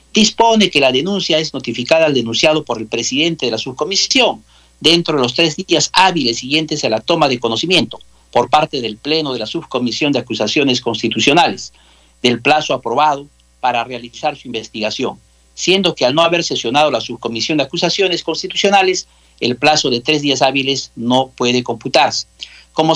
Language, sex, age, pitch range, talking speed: Spanish, male, 50-69, 115-165 Hz, 165 wpm